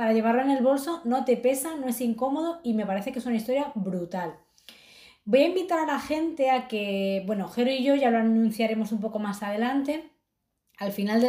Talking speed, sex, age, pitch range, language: 220 wpm, female, 20-39, 215-260 Hz, Spanish